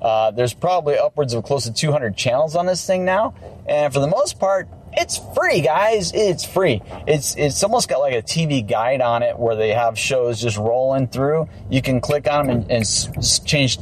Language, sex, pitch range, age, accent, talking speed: English, male, 115-155 Hz, 30-49, American, 210 wpm